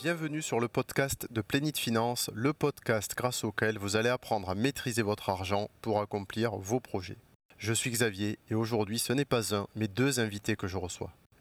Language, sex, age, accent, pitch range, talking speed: French, male, 20-39, French, 105-130 Hz, 195 wpm